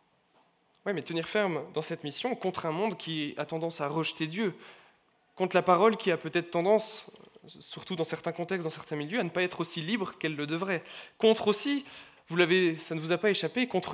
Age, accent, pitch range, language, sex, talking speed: 20-39, French, 150-190 Hz, French, male, 215 wpm